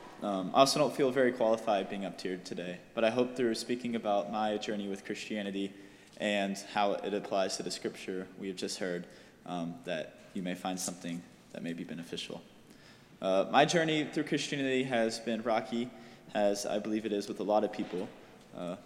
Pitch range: 100-125 Hz